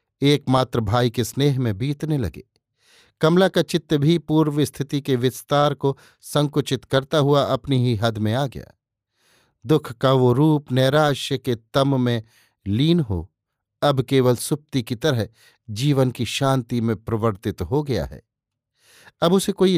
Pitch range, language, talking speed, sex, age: 120-145 Hz, Hindi, 155 wpm, male, 50-69